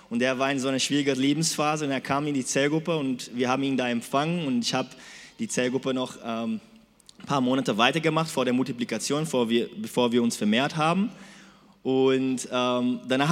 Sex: male